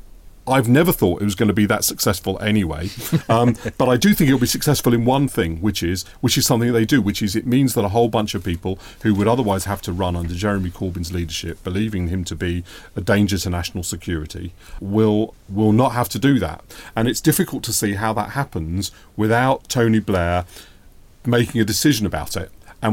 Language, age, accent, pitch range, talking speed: English, 40-59, British, 95-125 Hz, 215 wpm